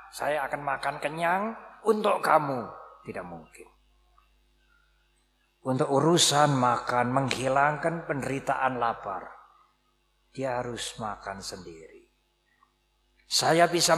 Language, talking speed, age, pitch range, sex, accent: Indonesian, 85 wpm, 50-69, 135-180 Hz, male, native